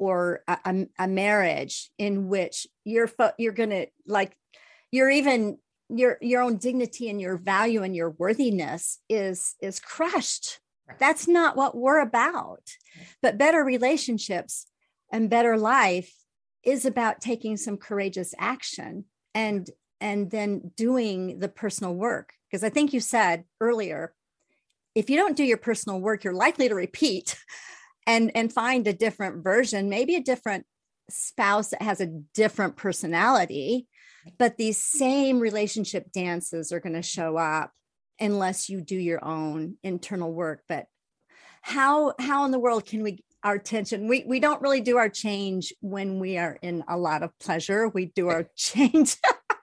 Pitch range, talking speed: 190-250 Hz, 155 wpm